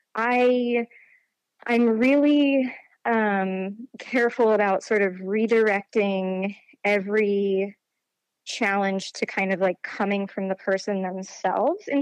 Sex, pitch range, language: female, 195-240 Hz, English